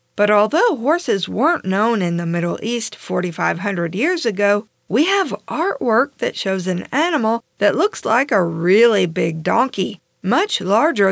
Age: 50-69